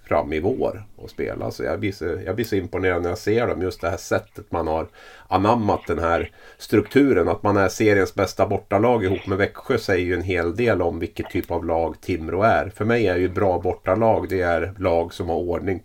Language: Swedish